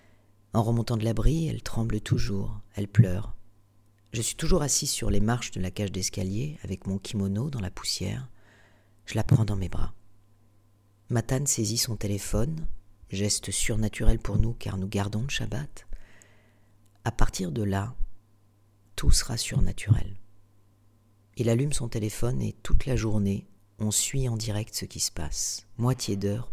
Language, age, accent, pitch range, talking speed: French, 40-59, French, 100-115 Hz, 160 wpm